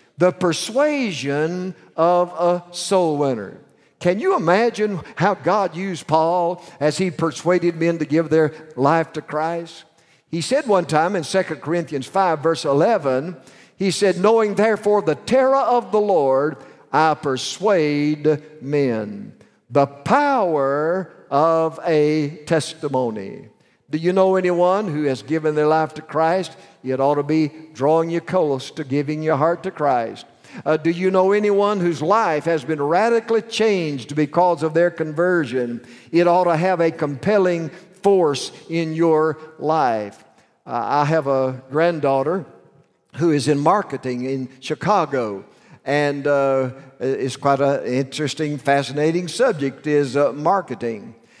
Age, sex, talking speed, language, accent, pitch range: 50-69, male, 140 wpm, English, American, 145-180 Hz